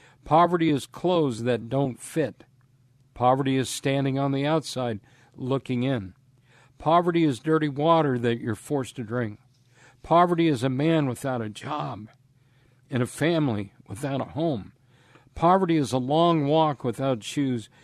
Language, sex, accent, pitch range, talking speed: English, male, American, 125-155 Hz, 145 wpm